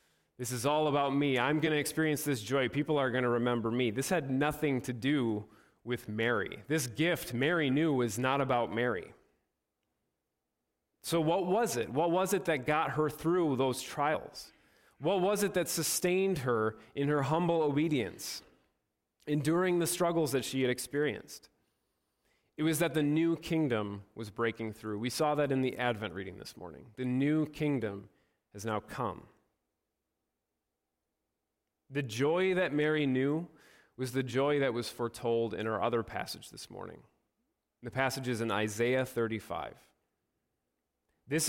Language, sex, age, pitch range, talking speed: English, male, 30-49, 120-155 Hz, 160 wpm